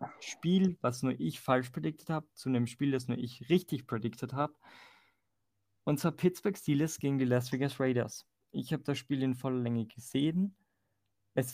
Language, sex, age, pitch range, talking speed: Danish, male, 20-39, 120-140 Hz, 175 wpm